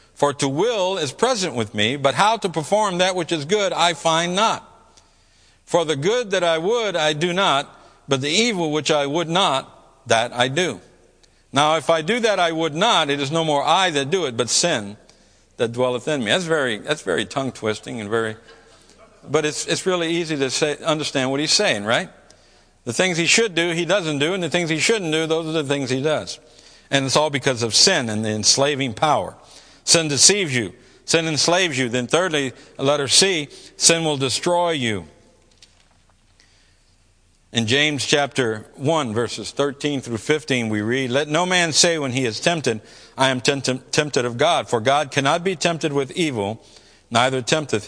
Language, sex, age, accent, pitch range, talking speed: English, male, 60-79, American, 115-165 Hz, 195 wpm